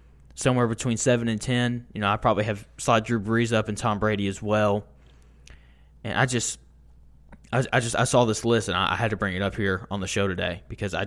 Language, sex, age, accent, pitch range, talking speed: English, male, 20-39, American, 85-120 Hz, 240 wpm